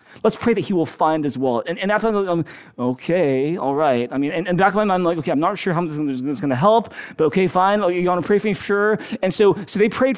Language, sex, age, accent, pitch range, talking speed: English, male, 30-49, American, 185-270 Hz, 305 wpm